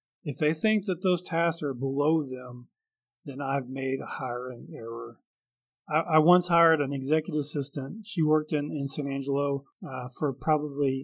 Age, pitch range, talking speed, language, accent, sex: 40-59, 135-165 Hz, 170 wpm, English, American, male